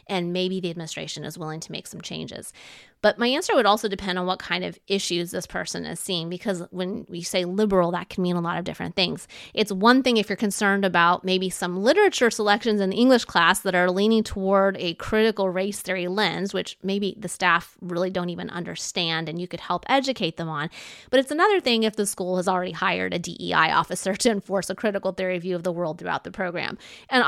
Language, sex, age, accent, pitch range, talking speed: English, female, 30-49, American, 175-205 Hz, 225 wpm